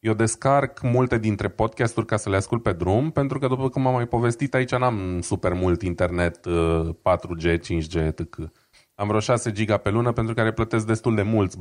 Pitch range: 100-130 Hz